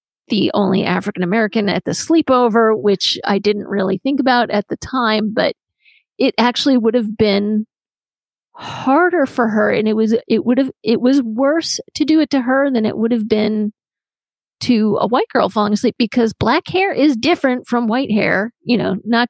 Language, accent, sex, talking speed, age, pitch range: English, American, female, 185 wpm, 40-59, 200-245 Hz